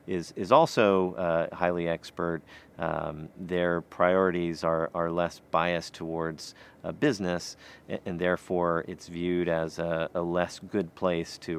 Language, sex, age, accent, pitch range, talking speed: English, male, 40-59, American, 85-95 Hz, 145 wpm